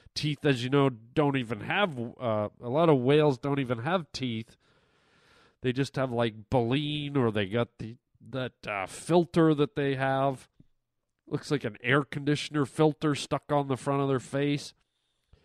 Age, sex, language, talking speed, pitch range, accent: 40-59, male, English, 170 wpm, 125-175 Hz, American